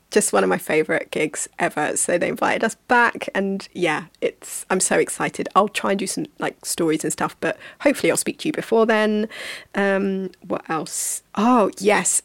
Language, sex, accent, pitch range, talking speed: English, female, British, 185-265 Hz, 195 wpm